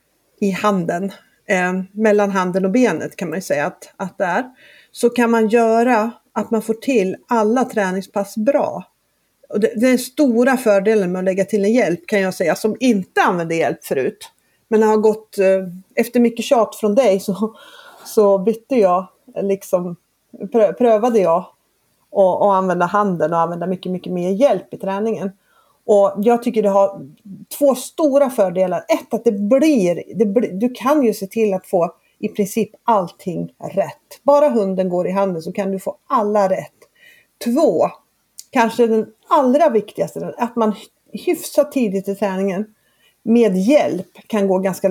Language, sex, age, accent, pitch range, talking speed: Swedish, female, 40-59, native, 195-240 Hz, 165 wpm